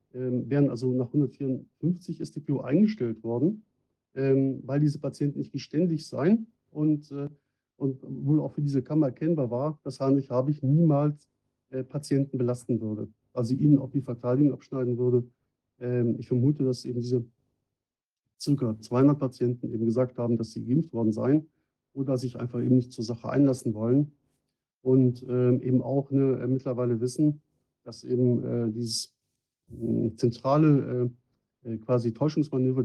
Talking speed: 135 wpm